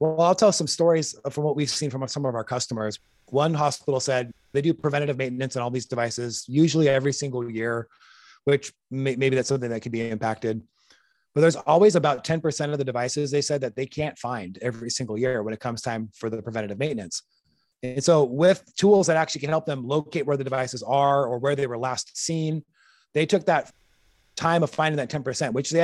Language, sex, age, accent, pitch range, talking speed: English, male, 30-49, American, 125-150 Hz, 215 wpm